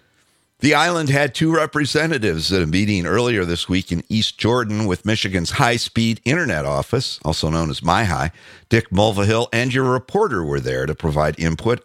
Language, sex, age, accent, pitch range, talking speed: English, male, 50-69, American, 90-115 Hz, 165 wpm